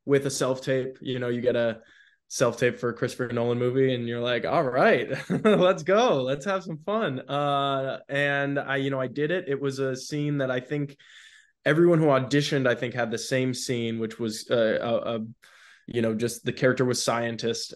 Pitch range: 120-135 Hz